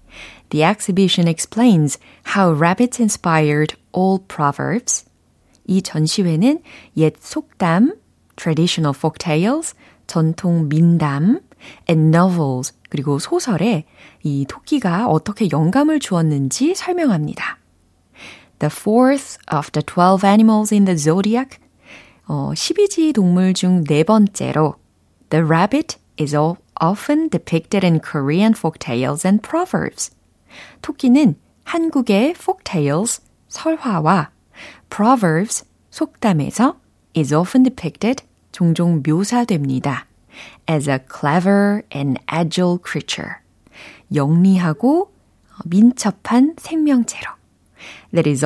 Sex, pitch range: female, 155-235 Hz